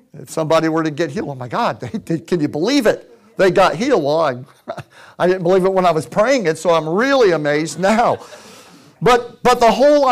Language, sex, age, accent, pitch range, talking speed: English, male, 50-69, American, 155-225 Hz, 220 wpm